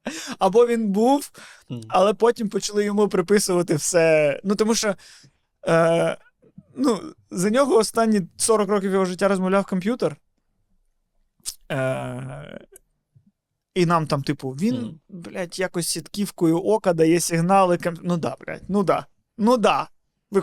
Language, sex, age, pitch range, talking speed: Ukrainian, male, 20-39, 150-200 Hz, 115 wpm